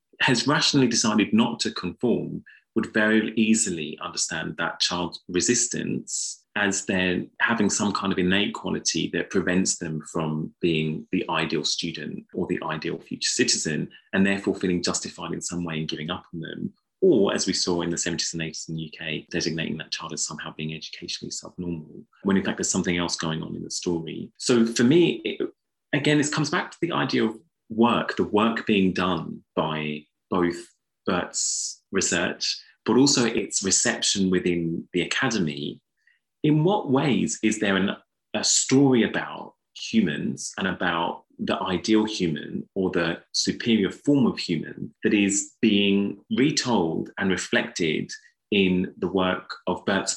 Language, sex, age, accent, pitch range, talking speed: English, male, 30-49, British, 85-110 Hz, 165 wpm